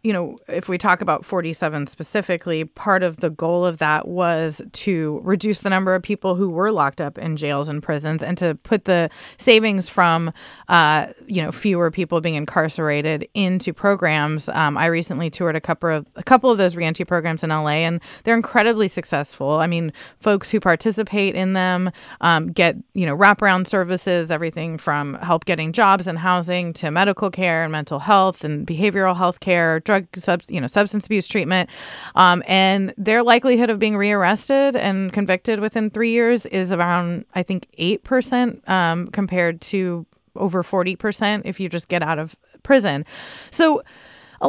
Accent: American